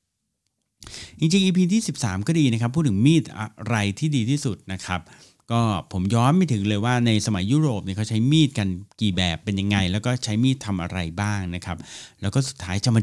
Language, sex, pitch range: Thai, male, 95-130 Hz